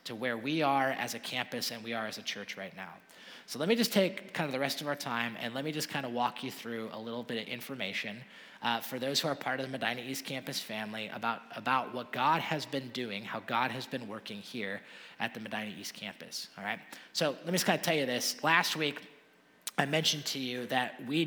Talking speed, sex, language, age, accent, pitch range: 255 wpm, male, English, 30-49, American, 125-160 Hz